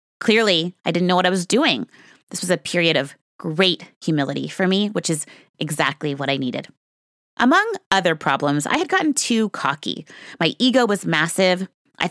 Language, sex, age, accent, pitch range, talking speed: English, female, 20-39, American, 150-195 Hz, 180 wpm